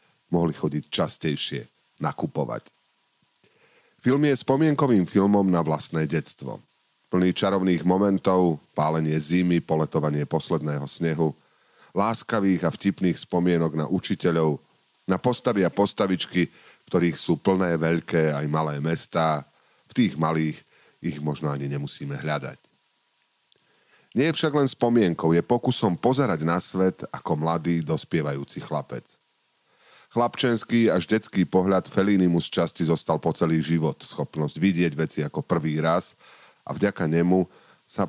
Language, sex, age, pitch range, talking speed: Slovak, male, 40-59, 80-100 Hz, 125 wpm